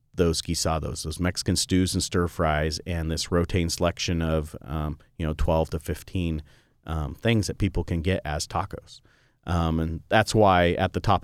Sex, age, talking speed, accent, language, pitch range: male, 30-49, 180 wpm, American, English, 80-105 Hz